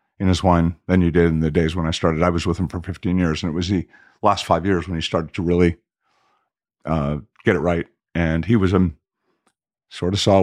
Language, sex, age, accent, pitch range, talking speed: English, male, 50-69, American, 85-105 Hz, 245 wpm